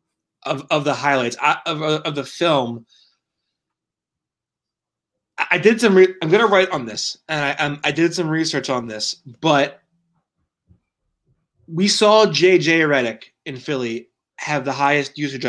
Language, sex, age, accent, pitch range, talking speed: English, male, 20-39, American, 120-155 Hz, 145 wpm